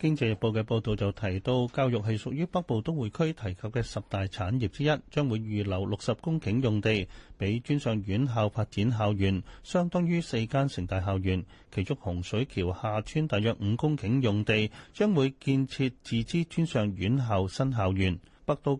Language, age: Chinese, 30-49